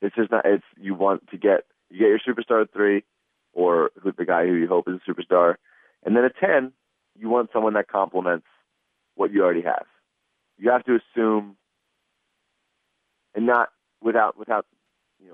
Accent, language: American, English